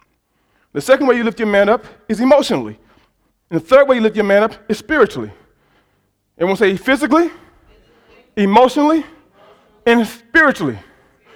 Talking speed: 145 wpm